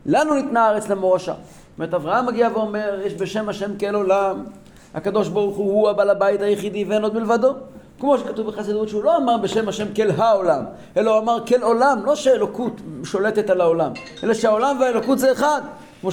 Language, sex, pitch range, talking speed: Hebrew, male, 195-260 Hz, 185 wpm